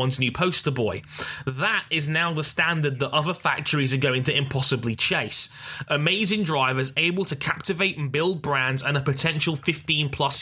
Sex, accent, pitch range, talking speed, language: male, British, 130-165 Hz, 165 wpm, English